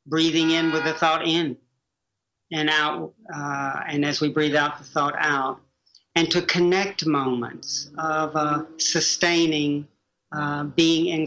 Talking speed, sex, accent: 145 wpm, male, American